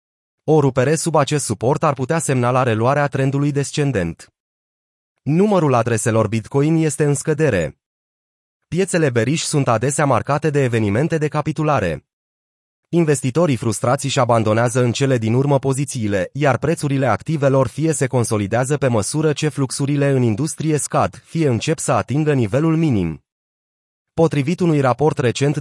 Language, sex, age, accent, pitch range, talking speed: Romanian, male, 30-49, native, 120-150 Hz, 135 wpm